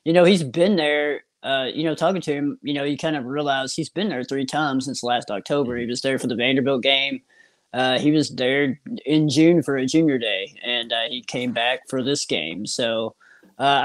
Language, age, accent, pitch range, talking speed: English, 30-49, American, 130-160 Hz, 225 wpm